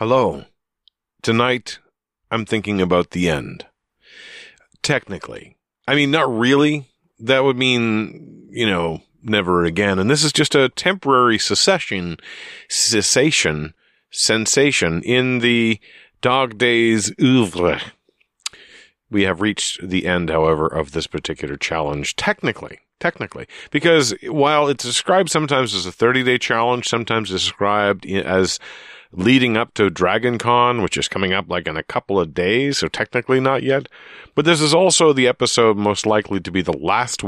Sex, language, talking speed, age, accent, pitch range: male, English, 145 wpm, 40-59, American, 95-135 Hz